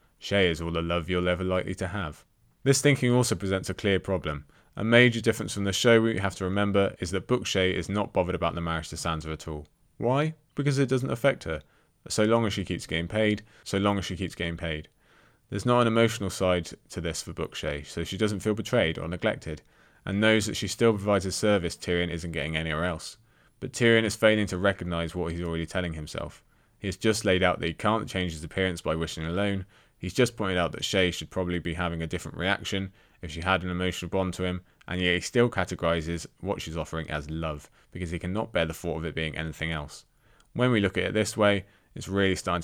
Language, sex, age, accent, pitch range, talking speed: English, male, 20-39, British, 85-110 Hz, 235 wpm